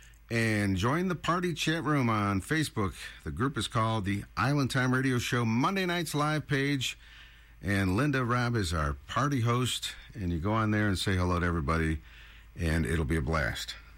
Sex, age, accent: male, 50-69, American